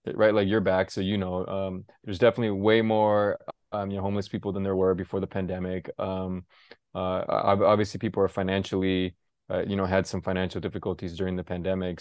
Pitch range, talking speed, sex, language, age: 95-120 Hz, 195 wpm, male, English, 20-39